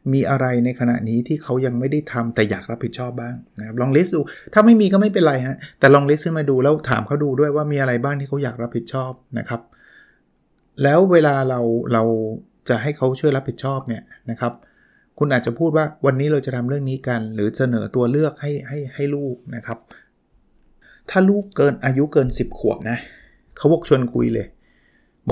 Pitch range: 115-145 Hz